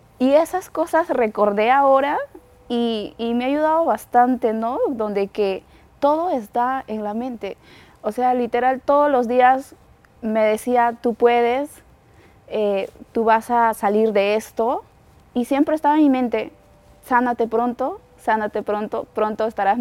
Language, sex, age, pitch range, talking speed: Spanish, female, 20-39, 210-260 Hz, 145 wpm